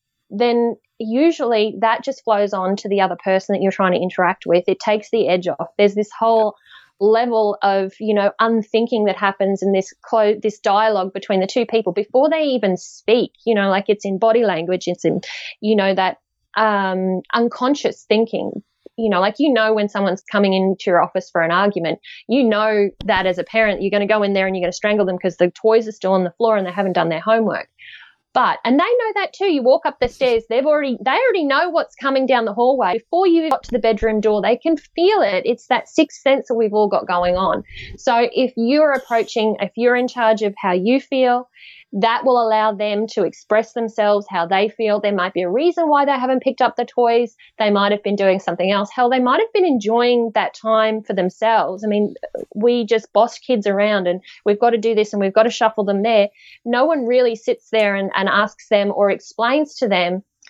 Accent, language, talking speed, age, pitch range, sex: Australian, English, 230 wpm, 20-39, 195-240 Hz, female